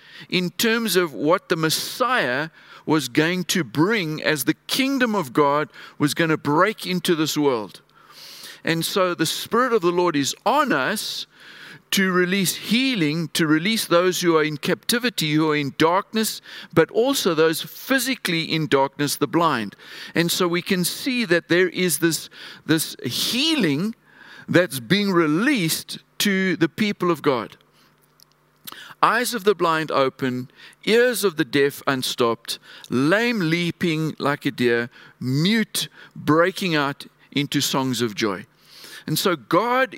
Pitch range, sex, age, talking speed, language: 150-205 Hz, male, 50-69, 145 wpm, English